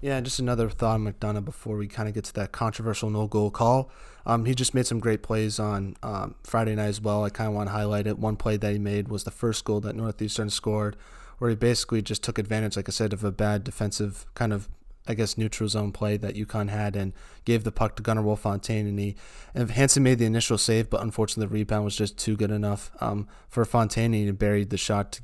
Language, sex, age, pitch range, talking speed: English, male, 20-39, 105-115 Hz, 245 wpm